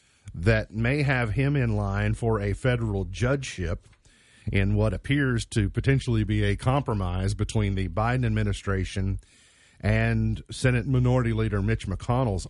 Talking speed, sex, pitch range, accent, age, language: 135 wpm, male, 95-120 Hz, American, 40-59, English